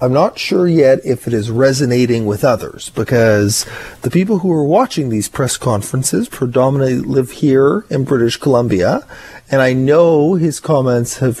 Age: 40-59